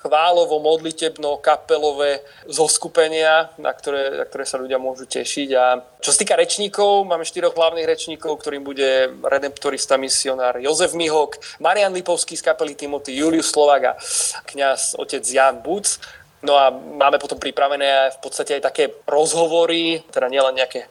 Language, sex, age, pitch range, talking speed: Slovak, male, 20-39, 135-160 Hz, 150 wpm